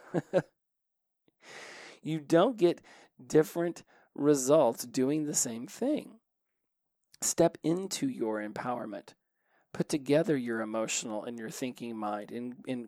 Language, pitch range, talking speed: English, 130-175 Hz, 105 wpm